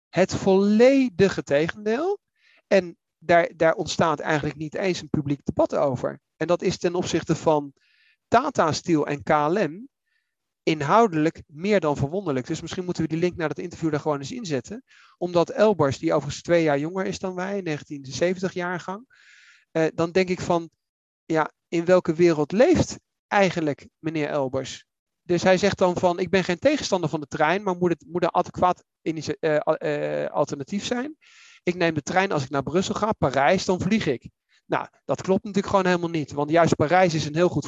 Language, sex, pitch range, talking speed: Dutch, male, 150-195 Hz, 185 wpm